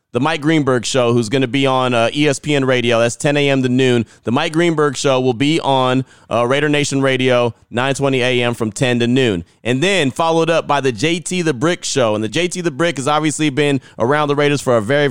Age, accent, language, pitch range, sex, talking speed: 30-49, American, English, 125-150 Hz, male, 230 wpm